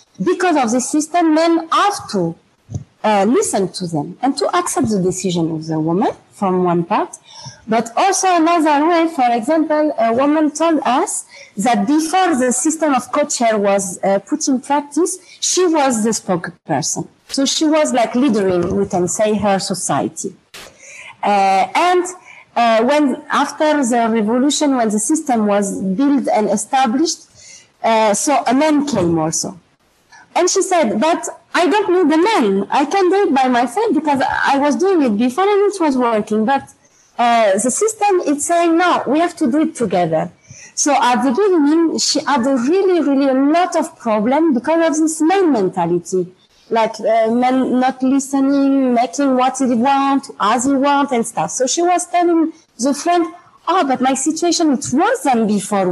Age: 40-59